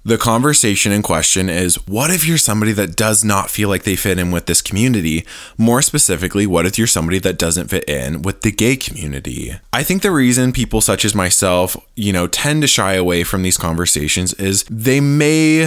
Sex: male